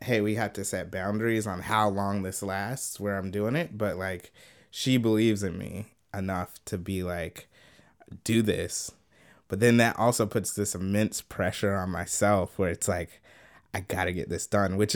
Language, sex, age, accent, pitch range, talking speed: English, male, 20-39, American, 95-110 Hz, 190 wpm